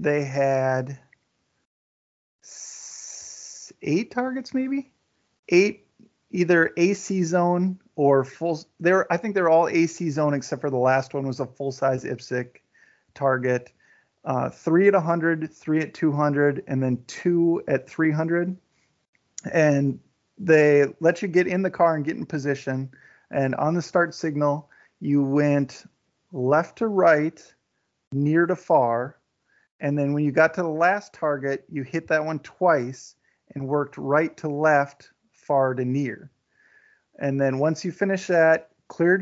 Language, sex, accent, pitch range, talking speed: English, male, American, 140-170 Hz, 145 wpm